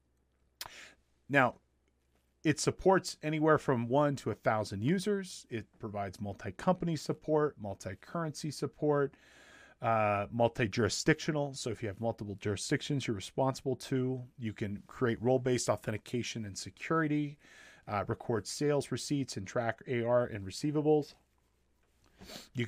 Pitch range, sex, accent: 100-135 Hz, male, American